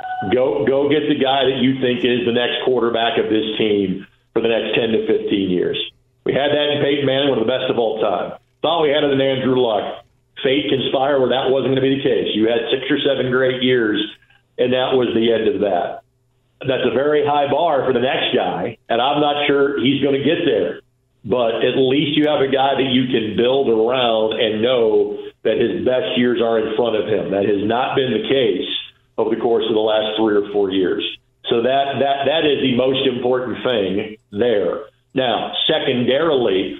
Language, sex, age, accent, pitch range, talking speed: English, male, 50-69, American, 120-150 Hz, 220 wpm